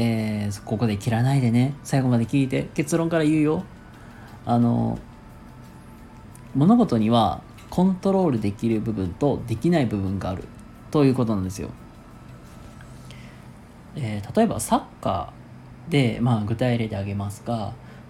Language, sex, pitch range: Japanese, male, 110-165 Hz